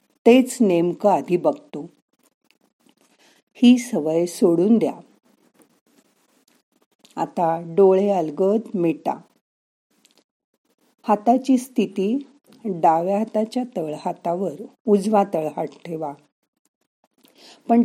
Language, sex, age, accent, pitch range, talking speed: Marathi, female, 50-69, native, 170-235 Hz, 70 wpm